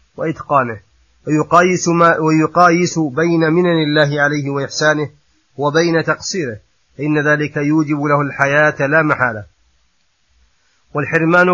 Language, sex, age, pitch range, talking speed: Arabic, male, 30-49, 150-165 Hz, 100 wpm